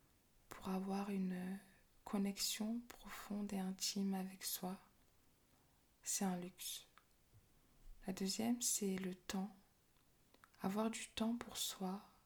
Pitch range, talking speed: 185-205 Hz, 110 wpm